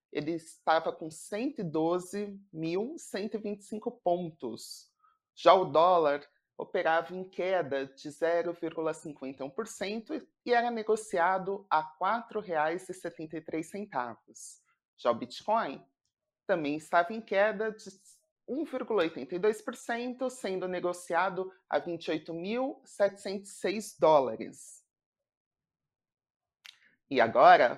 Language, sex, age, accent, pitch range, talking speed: Portuguese, male, 30-49, Brazilian, 160-215 Hz, 75 wpm